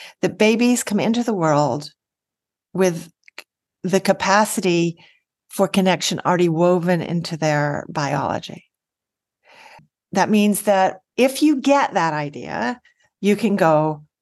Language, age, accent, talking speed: English, 40-59, American, 115 wpm